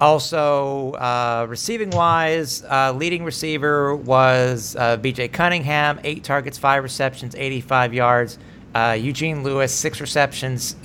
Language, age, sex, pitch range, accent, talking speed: English, 50-69, male, 120-155 Hz, American, 120 wpm